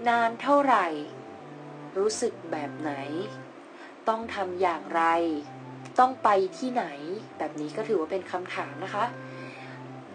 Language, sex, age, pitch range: Thai, female, 20-39, 180-245 Hz